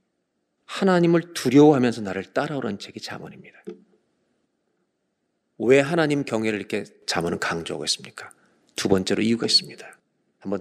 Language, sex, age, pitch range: Korean, male, 40-59, 115-175 Hz